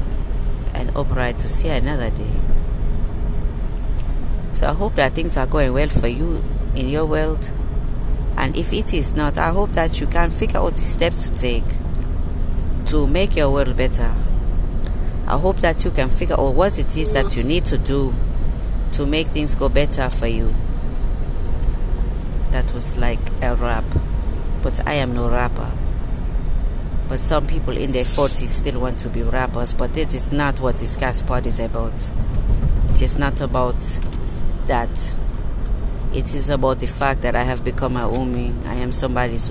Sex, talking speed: female, 170 wpm